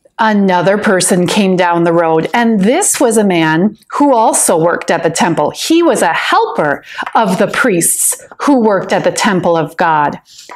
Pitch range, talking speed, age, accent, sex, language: 195-310 Hz, 175 wpm, 40-59, American, female, English